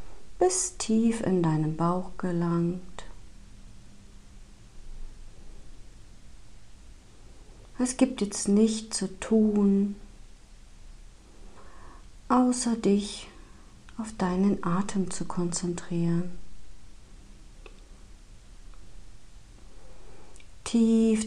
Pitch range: 170-200 Hz